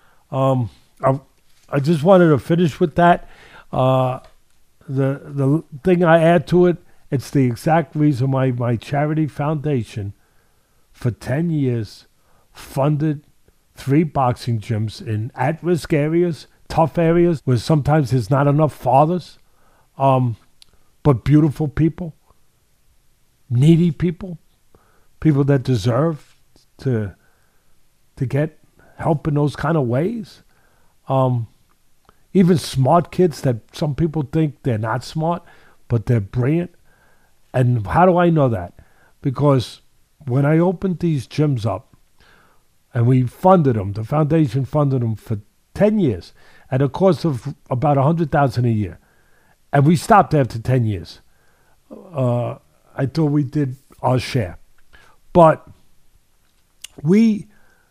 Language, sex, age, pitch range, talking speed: English, male, 50-69, 125-160 Hz, 130 wpm